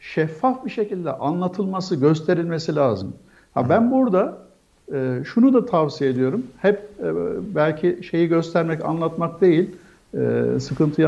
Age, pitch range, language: 60-79, 140-190 Hz, Turkish